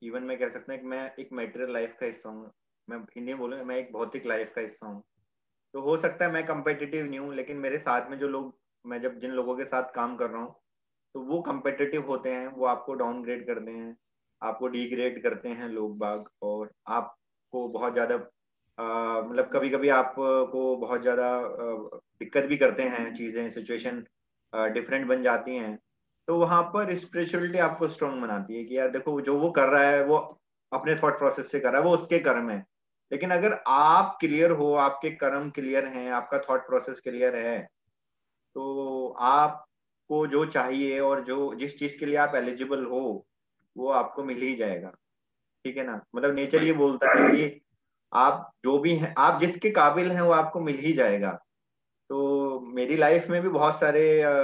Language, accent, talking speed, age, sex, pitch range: Hindi, native, 190 wpm, 30-49, male, 120-145 Hz